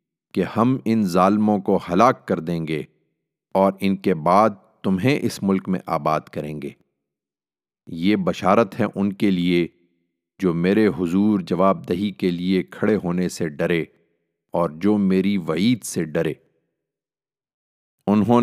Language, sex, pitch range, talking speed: Urdu, male, 85-105 Hz, 145 wpm